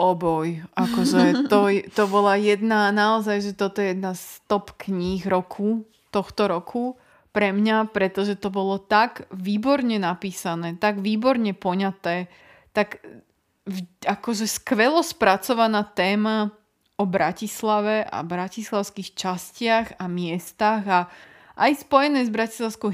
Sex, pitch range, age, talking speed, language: female, 190-225 Hz, 20-39, 120 wpm, Slovak